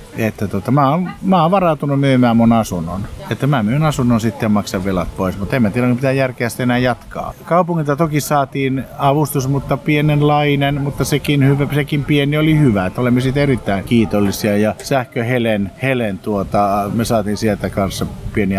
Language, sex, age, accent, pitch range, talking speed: Finnish, male, 50-69, native, 100-140 Hz, 170 wpm